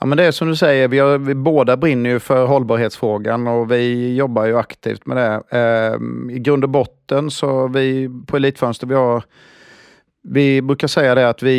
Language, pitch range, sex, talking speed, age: Swedish, 115-135 Hz, male, 195 wpm, 30-49